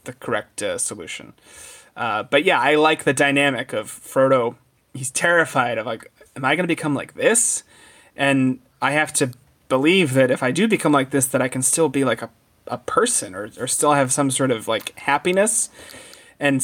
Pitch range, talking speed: 140-175 Hz, 200 wpm